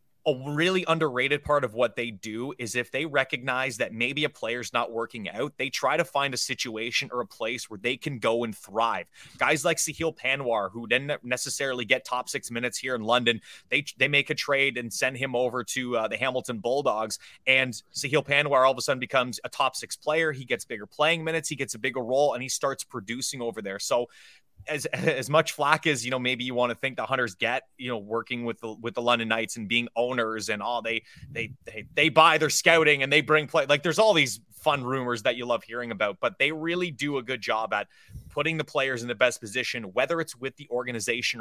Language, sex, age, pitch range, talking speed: English, male, 20-39, 120-145 Hz, 235 wpm